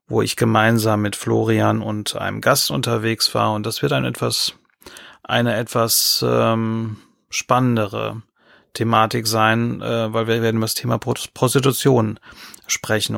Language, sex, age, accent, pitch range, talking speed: German, male, 30-49, German, 110-125 Hz, 135 wpm